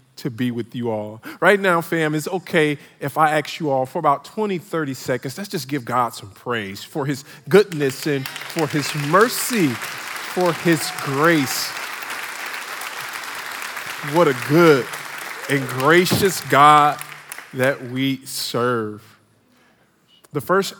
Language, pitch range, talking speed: English, 115-145 Hz, 135 wpm